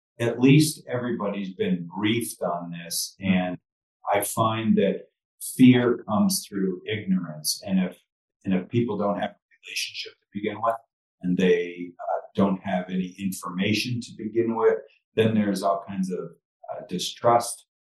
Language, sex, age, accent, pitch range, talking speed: English, male, 40-59, American, 95-120 Hz, 150 wpm